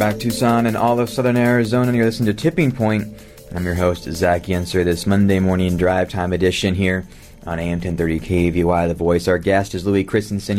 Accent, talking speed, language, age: American, 200 wpm, English, 30-49